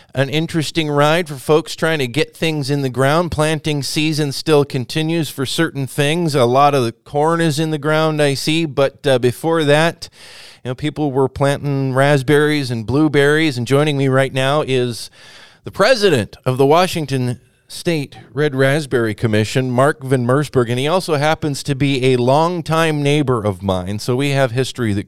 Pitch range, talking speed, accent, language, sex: 120-150 Hz, 180 wpm, American, English, male